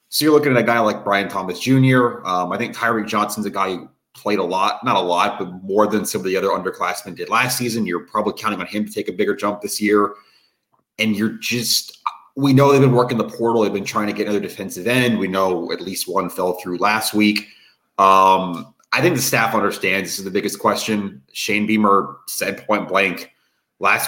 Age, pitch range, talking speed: 30-49, 90-115 Hz, 225 wpm